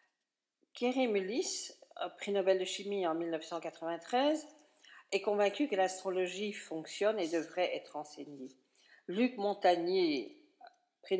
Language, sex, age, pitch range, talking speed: French, female, 50-69, 165-260 Hz, 105 wpm